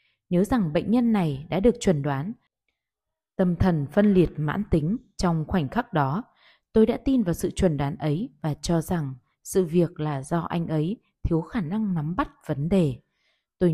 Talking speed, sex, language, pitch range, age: 190 wpm, female, Vietnamese, 165-225 Hz, 20-39